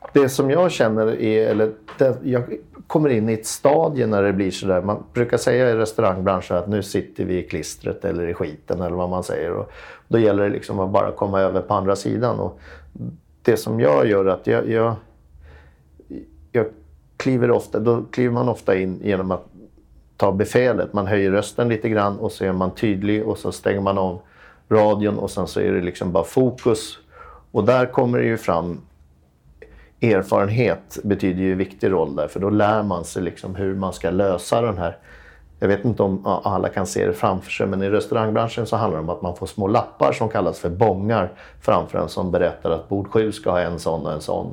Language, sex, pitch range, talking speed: Swedish, male, 95-115 Hz, 215 wpm